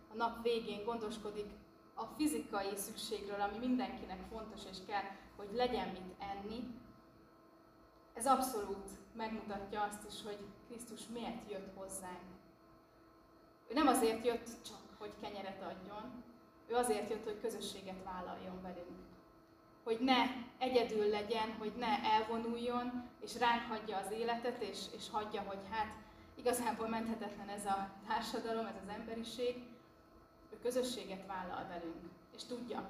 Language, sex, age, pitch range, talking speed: Hungarian, female, 20-39, 195-230 Hz, 130 wpm